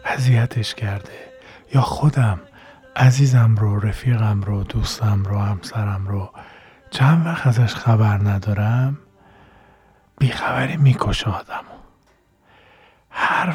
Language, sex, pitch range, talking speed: Persian, male, 105-130 Hz, 95 wpm